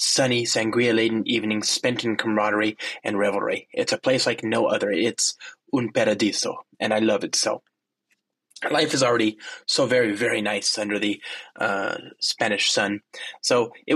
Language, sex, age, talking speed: English, male, 20-39, 155 wpm